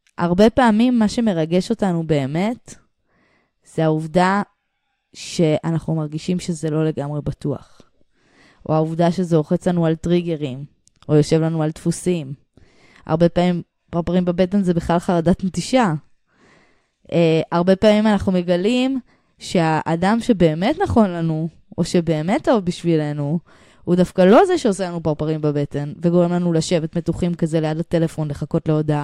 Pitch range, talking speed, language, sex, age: 160-195 Hz, 125 wpm, English, female, 20-39